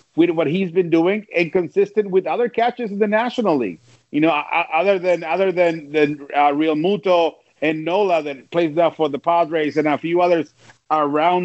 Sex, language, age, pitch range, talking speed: male, English, 40-59, 145-195 Hz, 195 wpm